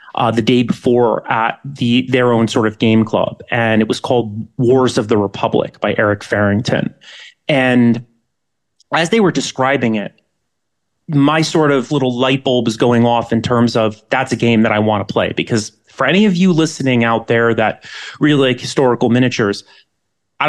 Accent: American